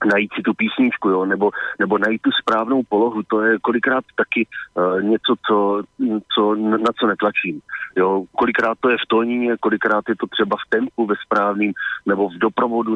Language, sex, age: Slovak, male, 40-59